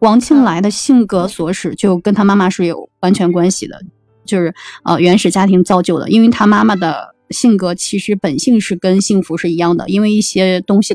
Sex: female